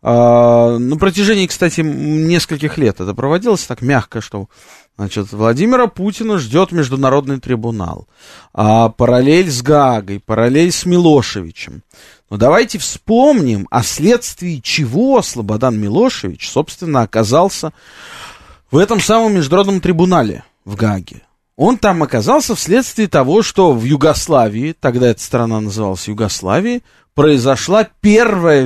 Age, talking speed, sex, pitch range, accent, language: 20-39, 110 wpm, male, 115-180 Hz, native, Russian